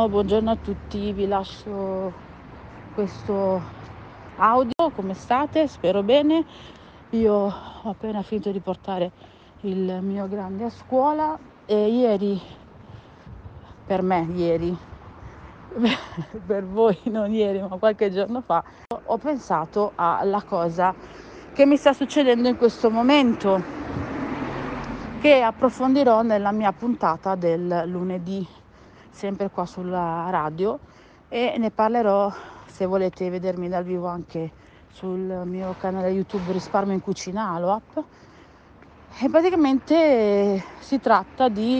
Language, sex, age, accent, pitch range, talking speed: Italian, female, 40-59, native, 185-235 Hz, 115 wpm